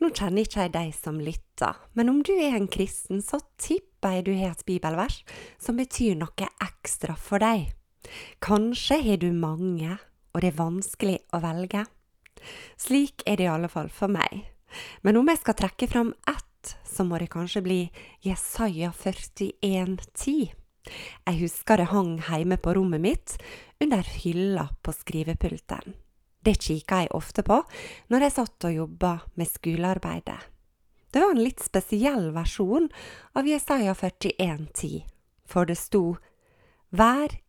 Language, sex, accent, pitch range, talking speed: English, female, Swedish, 175-240 Hz, 150 wpm